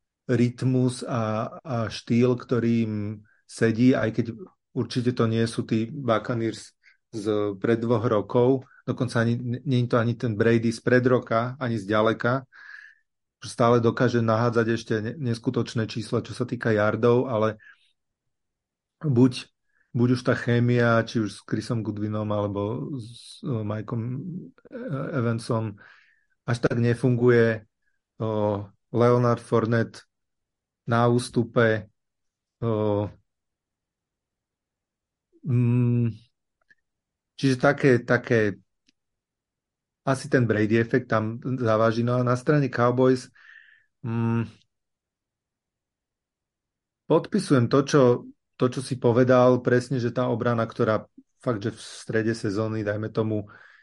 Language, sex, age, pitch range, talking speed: Slovak, male, 30-49, 110-125 Hz, 110 wpm